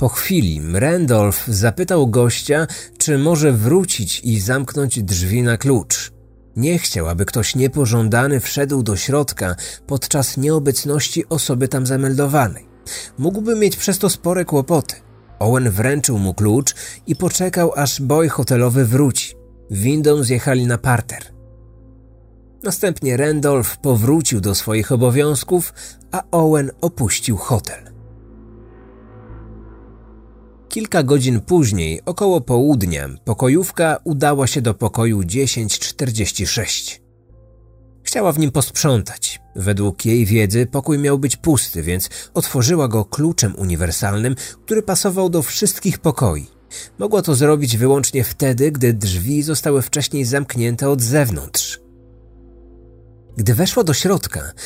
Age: 40-59